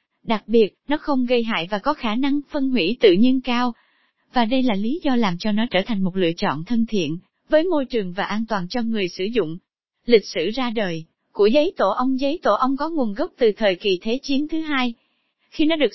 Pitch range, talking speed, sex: 205-275 Hz, 240 wpm, female